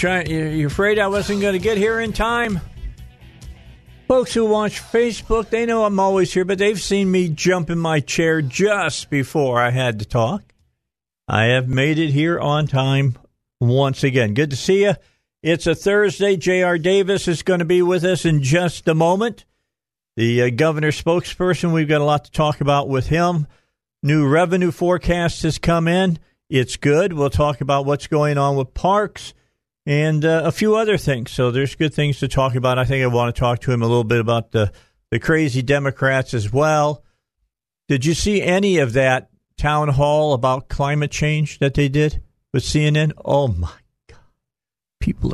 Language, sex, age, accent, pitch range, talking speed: English, male, 50-69, American, 130-175 Hz, 185 wpm